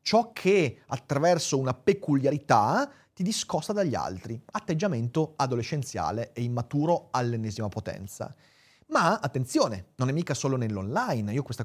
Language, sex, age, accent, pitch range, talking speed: Italian, male, 30-49, native, 120-170 Hz, 125 wpm